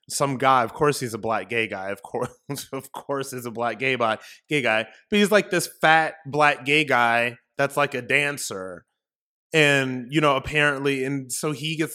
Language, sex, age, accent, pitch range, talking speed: English, male, 20-39, American, 120-145 Hz, 195 wpm